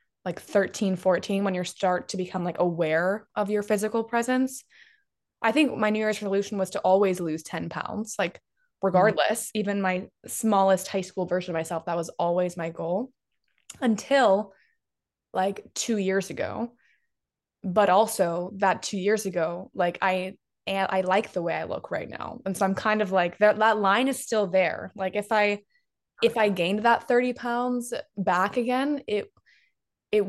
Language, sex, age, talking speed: English, female, 20-39, 170 wpm